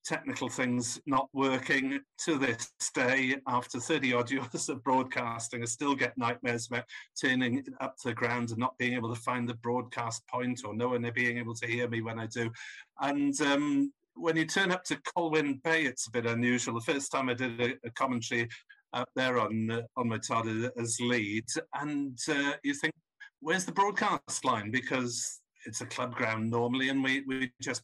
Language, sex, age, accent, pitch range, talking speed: English, male, 50-69, British, 120-155 Hz, 190 wpm